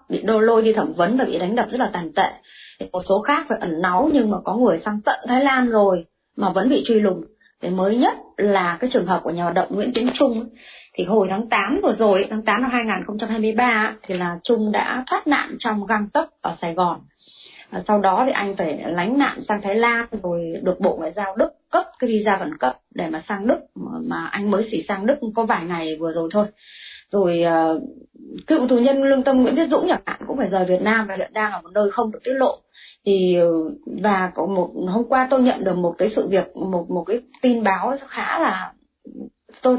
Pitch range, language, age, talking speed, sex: 190-255 Hz, Vietnamese, 20-39, 235 wpm, female